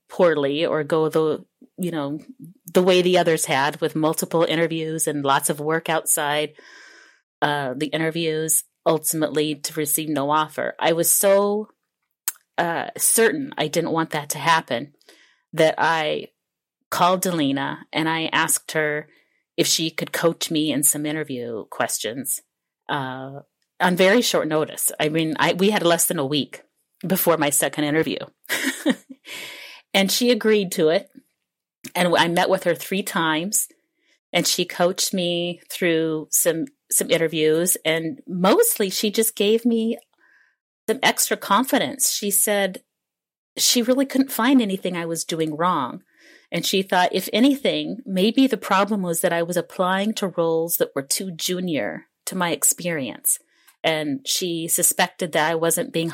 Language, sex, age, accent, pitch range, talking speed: English, female, 30-49, American, 155-200 Hz, 150 wpm